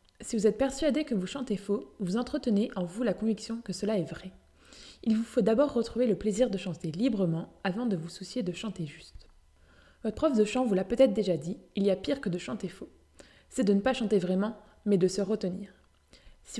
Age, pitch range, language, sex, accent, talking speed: 20-39, 190-245 Hz, French, female, French, 230 wpm